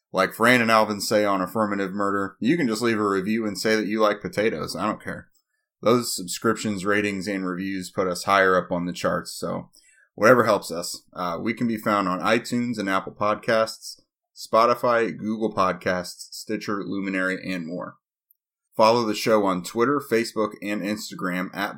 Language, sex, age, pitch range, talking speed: English, male, 30-49, 90-110 Hz, 180 wpm